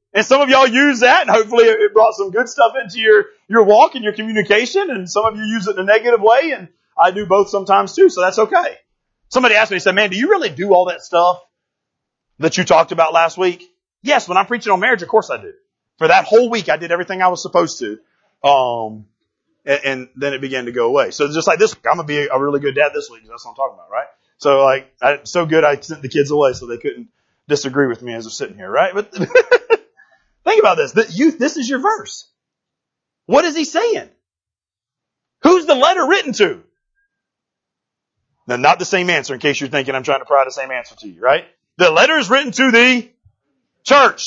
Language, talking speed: English, 235 wpm